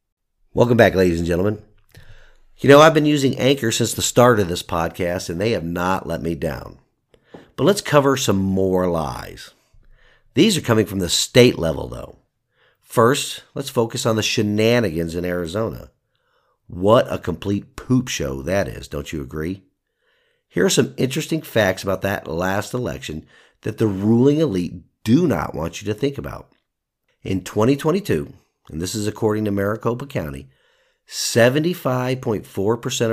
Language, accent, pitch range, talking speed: English, American, 90-115 Hz, 155 wpm